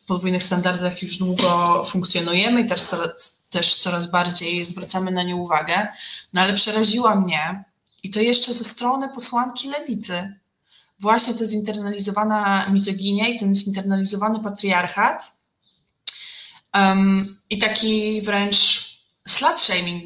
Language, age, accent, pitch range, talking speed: Polish, 20-39, native, 180-215 Hz, 120 wpm